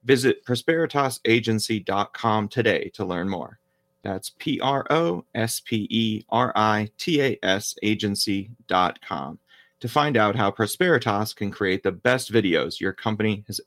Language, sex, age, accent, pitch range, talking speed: English, male, 30-49, American, 100-125 Hz, 95 wpm